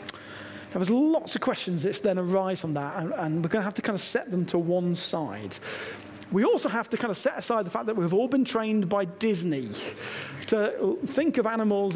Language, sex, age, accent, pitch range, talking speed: English, male, 40-59, British, 155-225 Hz, 225 wpm